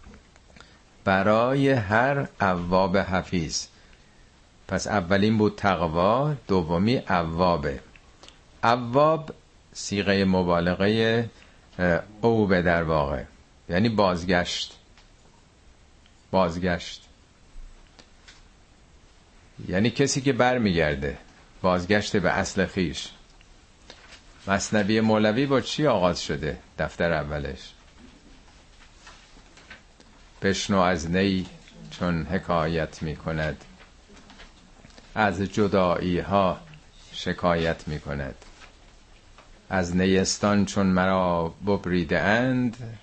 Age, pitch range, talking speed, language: 50-69, 85-105 Hz, 75 wpm, Persian